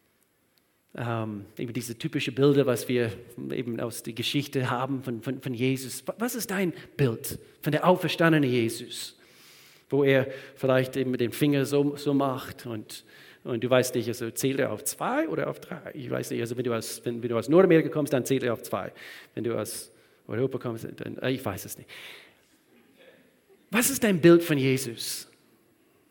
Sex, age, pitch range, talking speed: male, 40-59, 130-185 Hz, 185 wpm